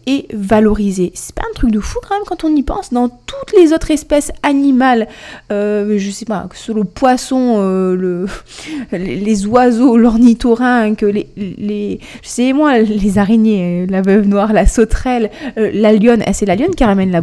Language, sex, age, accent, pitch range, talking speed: French, female, 20-39, French, 200-255 Hz, 195 wpm